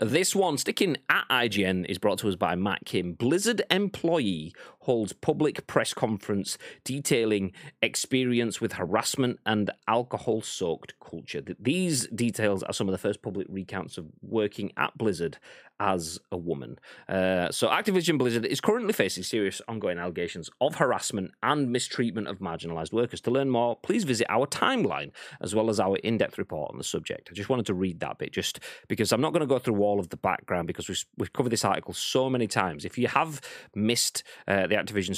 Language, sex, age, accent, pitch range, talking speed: English, male, 30-49, British, 95-130 Hz, 185 wpm